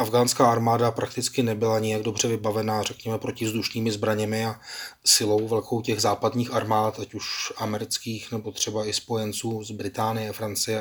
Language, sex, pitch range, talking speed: Czech, male, 110-125 Hz, 145 wpm